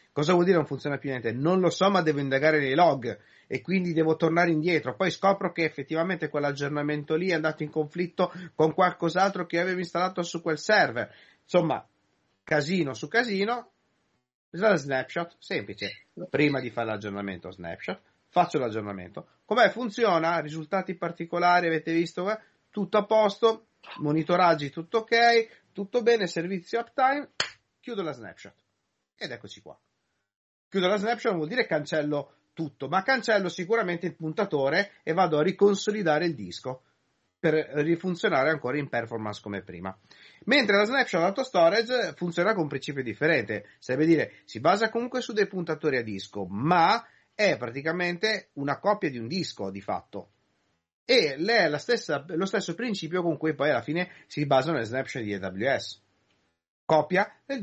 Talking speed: 155 wpm